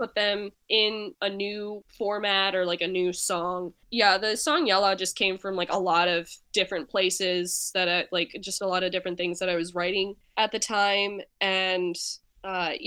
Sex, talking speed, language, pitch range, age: female, 190 wpm, English, 180-210 Hz, 10-29